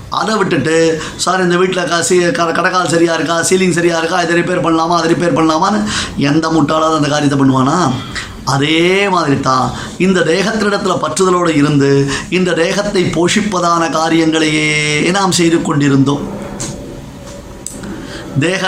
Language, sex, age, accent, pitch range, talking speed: Tamil, male, 20-39, native, 145-185 Hz, 110 wpm